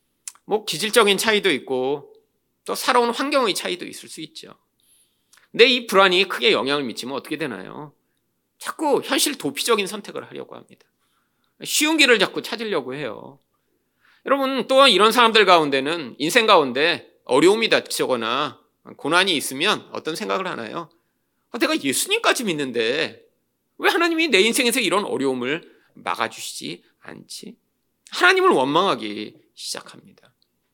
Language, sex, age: Korean, male, 30-49